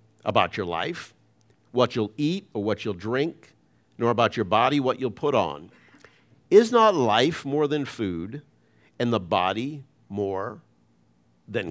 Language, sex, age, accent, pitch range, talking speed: English, male, 50-69, American, 115-165 Hz, 150 wpm